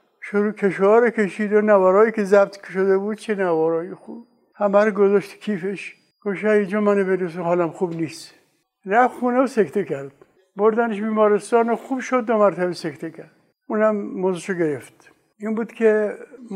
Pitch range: 180-215 Hz